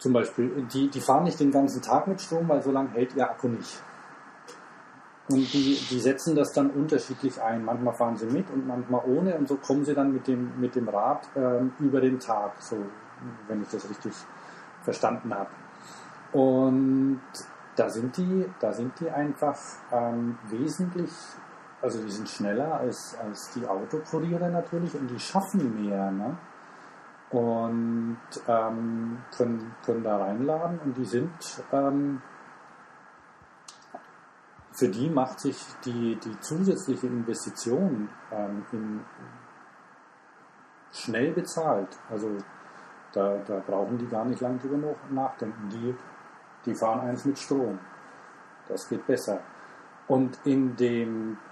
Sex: male